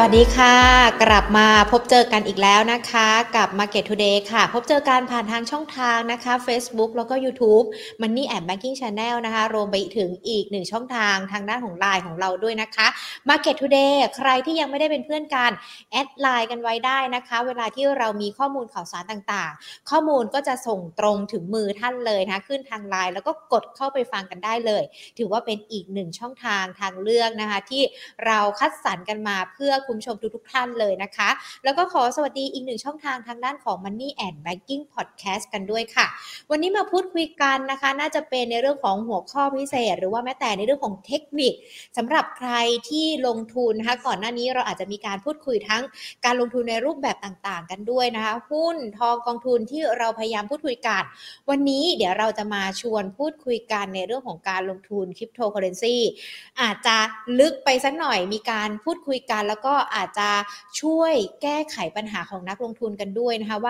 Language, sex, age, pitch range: Thai, female, 20-39, 210-270 Hz